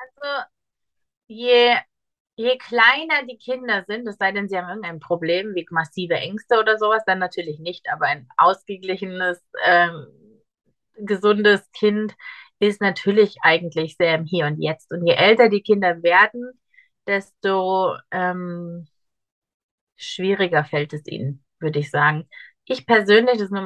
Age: 30-49